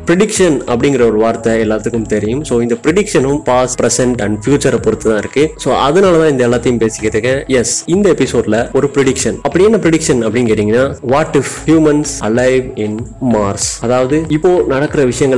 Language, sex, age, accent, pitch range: Tamil, male, 20-39, native, 115-150 Hz